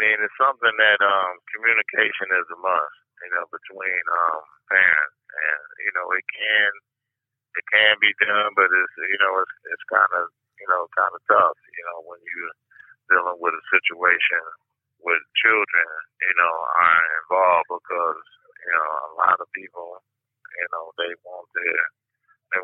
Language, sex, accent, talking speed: English, male, American, 165 wpm